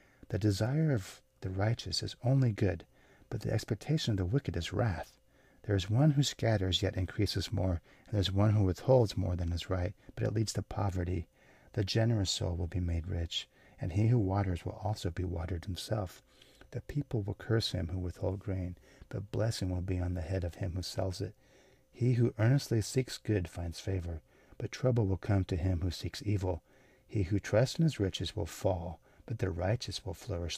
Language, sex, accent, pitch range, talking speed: English, male, American, 90-115 Hz, 205 wpm